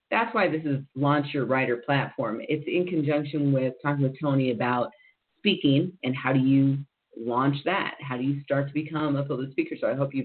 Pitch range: 135-170 Hz